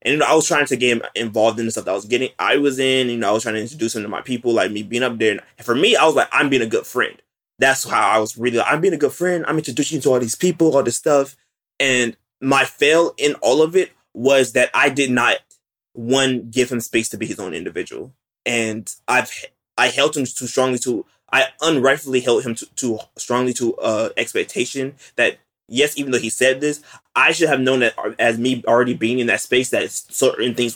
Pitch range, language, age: 115-135 Hz, English, 20-39